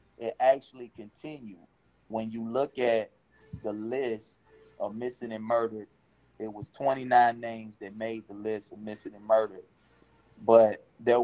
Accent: American